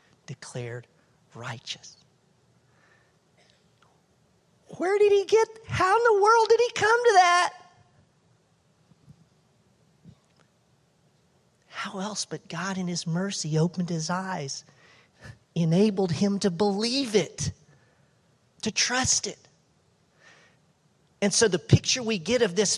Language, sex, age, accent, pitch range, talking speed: English, male, 40-59, American, 155-215 Hz, 110 wpm